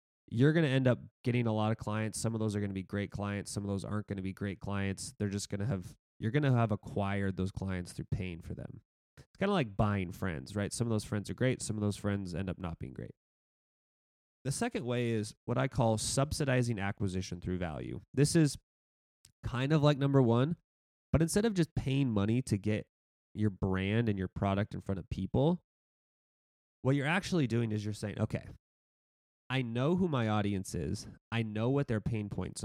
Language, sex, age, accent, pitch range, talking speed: English, male, 20-39, American, 100-125 Hz, 220 wpm